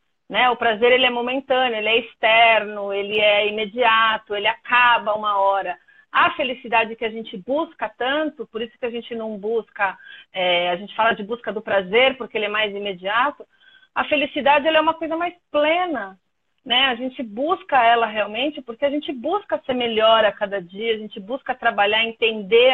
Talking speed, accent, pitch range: 180 wpm, Brazilian, 220-285 Hz